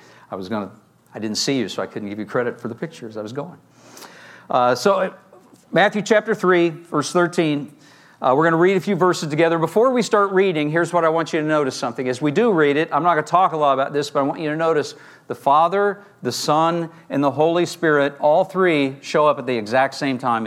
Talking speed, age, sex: 245 wpm, 50-69, male